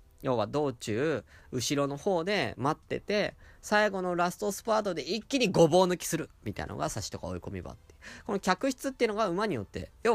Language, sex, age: Japanese, male, 20-39